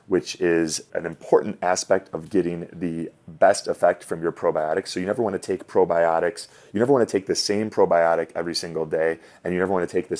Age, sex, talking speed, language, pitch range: 30-49, male, 225 wpm, English, 85-105 Hz